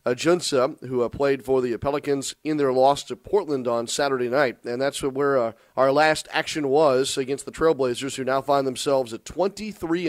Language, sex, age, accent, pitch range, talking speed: English, male, 40-59, American, 130-155 Hz, 190 wpm